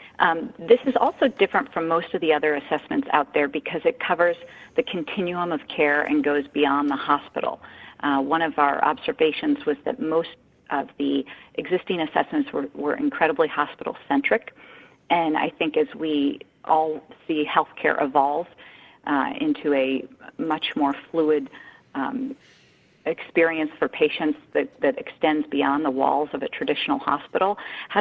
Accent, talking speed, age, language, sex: American, 155 wpm, 40-59, English, female